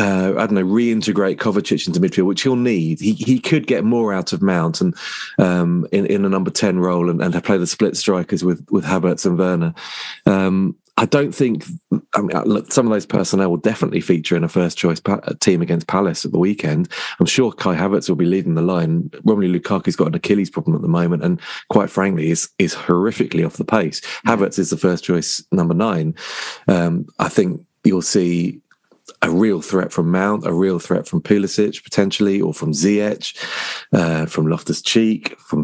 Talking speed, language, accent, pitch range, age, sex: 205 wpm, English, British, 85-105 Hz, 30-49, male